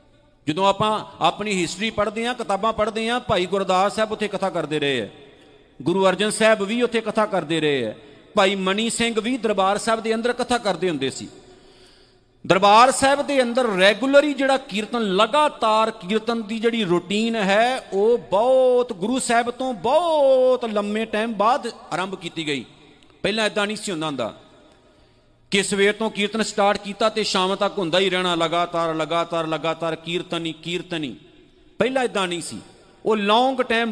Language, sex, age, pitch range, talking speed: Punjabi, male, 40-59, 180-235 Hz, 165 wpm